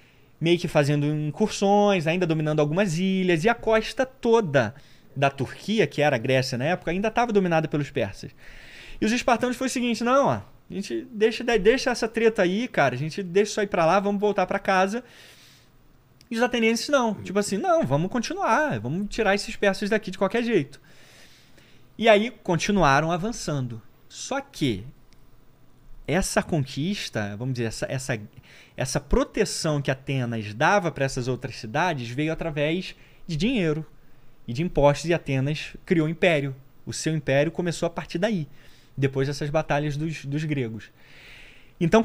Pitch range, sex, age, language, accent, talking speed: 135-205 Hz, male, 20-39, Portuguese, Brazilian, 165 wpm